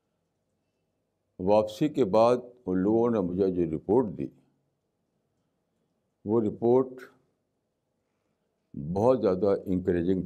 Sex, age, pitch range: male, 60-79, 90-125 Hz